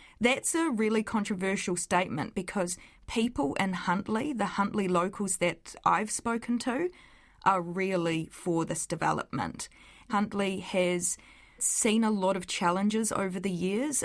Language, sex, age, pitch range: English, female, 20-39, 175-200 Hz